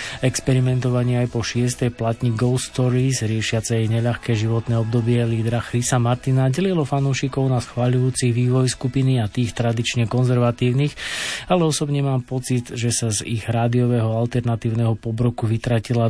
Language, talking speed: Slovak, 135 wpm